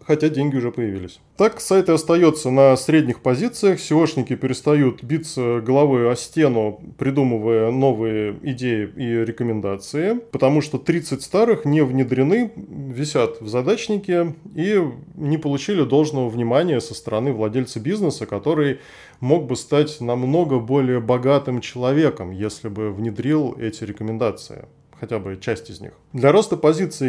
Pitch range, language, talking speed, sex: 120-155 Hz, Russian, 135 wpm, male